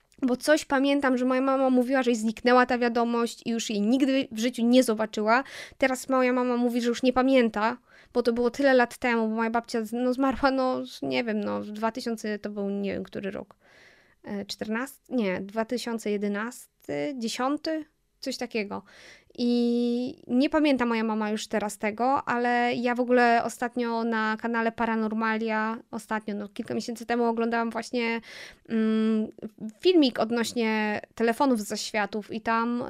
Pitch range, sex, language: 225-250 Hz, female, Polish